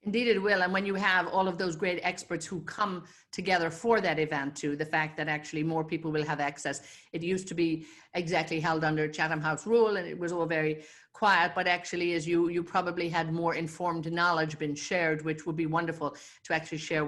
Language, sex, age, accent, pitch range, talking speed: English, female, 50-69, Irish, 155-185 Hz, 220 wpm